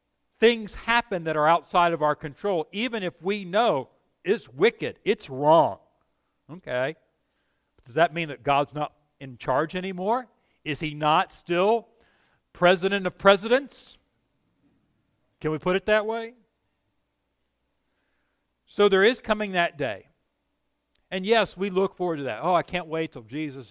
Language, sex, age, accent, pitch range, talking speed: English, male, 50-69, American, 145-195 Hz, 145 wpm